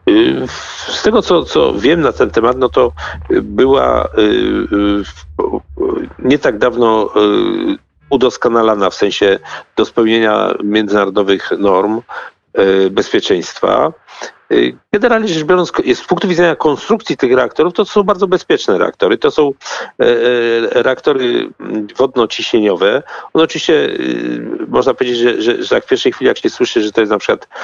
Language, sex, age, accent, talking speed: Polish, male, 50-69, native, 130 wpm